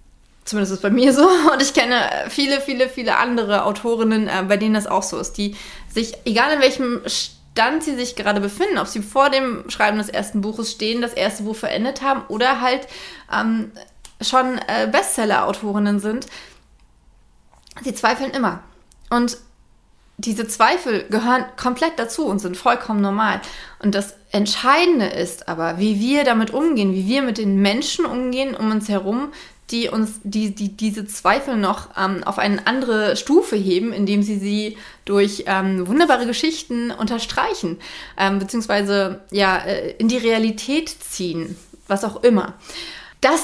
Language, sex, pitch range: German, female, 200-250 Hz